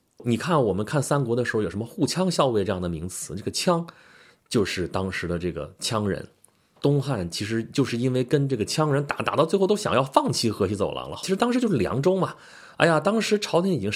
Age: 30-49